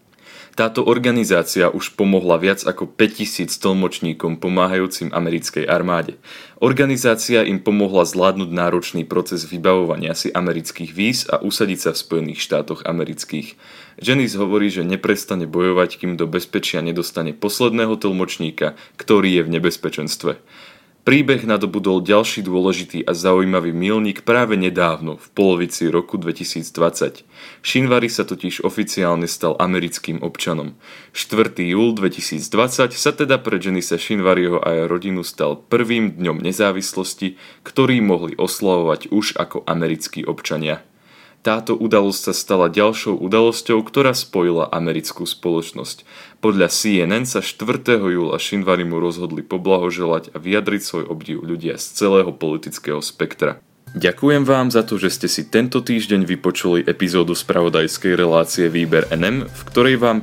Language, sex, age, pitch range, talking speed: Slovak, male, 30-49, 85-110 Hz, 130 wpm